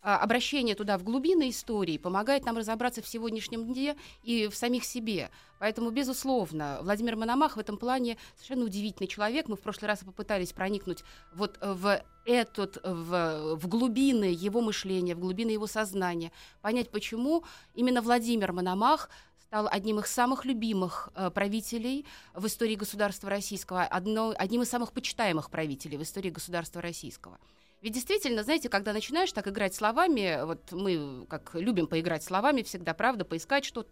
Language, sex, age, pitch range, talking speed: Russian, female, 30-49, 190-245 Hz, 145 wpm